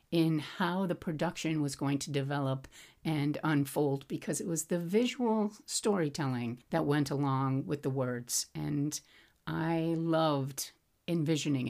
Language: English